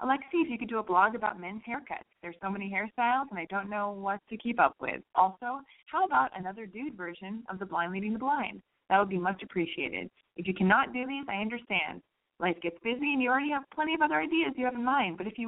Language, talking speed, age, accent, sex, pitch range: English, 255 wpm, 20-39, American, female, 170-235 Hz